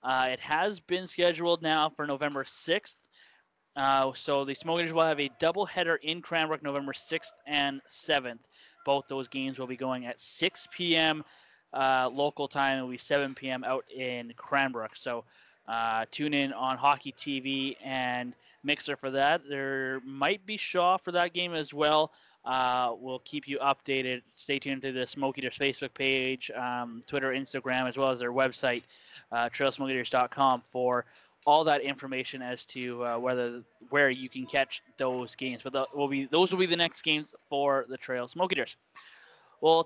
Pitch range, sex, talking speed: 130-155 Hz, male, 170 wpm